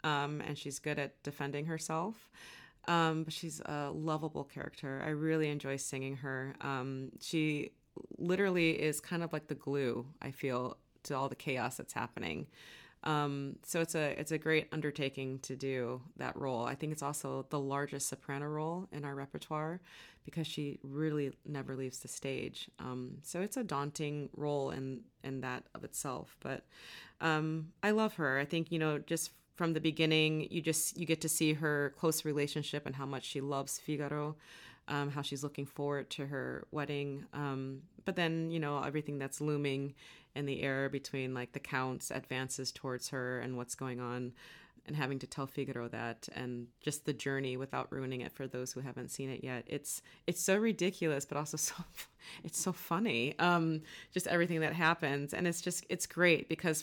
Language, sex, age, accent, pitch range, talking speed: English, female, 30-49, American, 135-160 Hz, 185 wpm